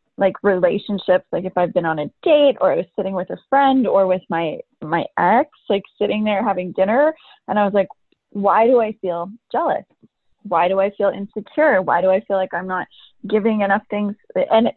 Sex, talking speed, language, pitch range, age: female, 205 wpm, English, 185-255 Hz, 20-39